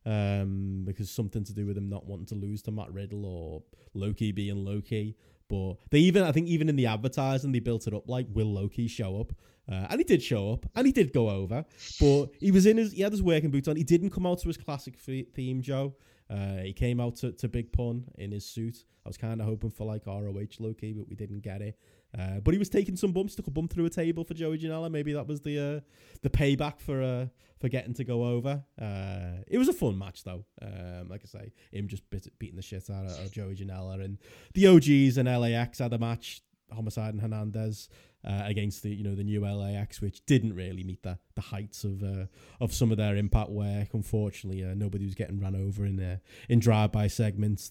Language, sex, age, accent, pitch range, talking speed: English, male, 20-39, British, 100-130 Hz, 240 wpm